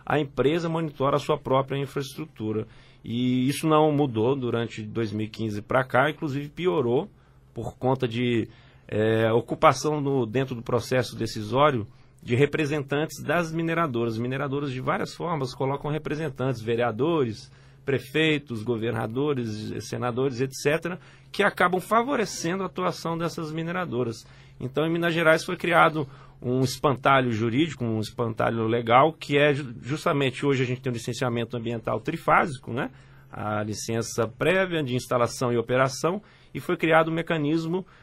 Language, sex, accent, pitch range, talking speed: Portuguese, male, Brazilian, 120-155 Hz, 130 wpm